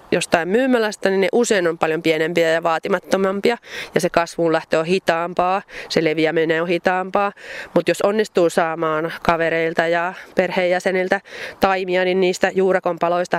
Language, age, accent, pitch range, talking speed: Finnish, 30-49, native, 170-200 Hz, 140 wpm